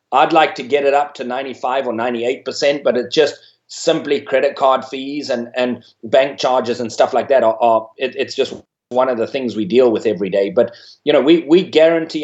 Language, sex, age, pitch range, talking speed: English, male, 30-49, 120-160 Hz, 225 wpm